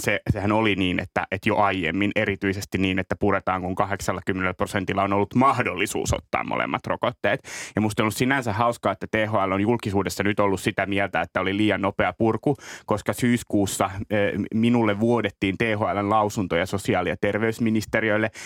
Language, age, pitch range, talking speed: Finnish, 30-49, 100-115 Hz, 160 wpm